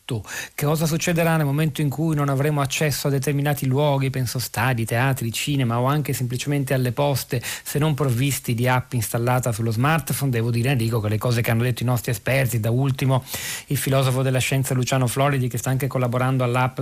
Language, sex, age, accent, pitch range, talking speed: Italian, male, 40-59, native, 120-145 Hz, 195 wpm